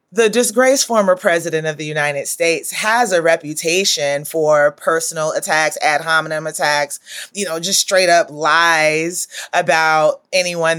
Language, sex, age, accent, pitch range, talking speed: English, female, 30-49, American, 160-205 Hz, 140 wpm